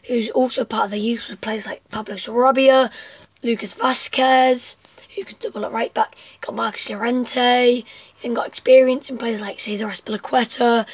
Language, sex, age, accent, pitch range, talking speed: English, female, 20-39, British, 230-270 Hz, 175 wpm